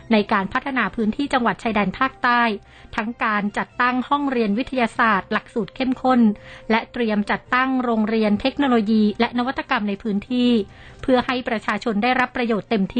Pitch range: 210-250 Hz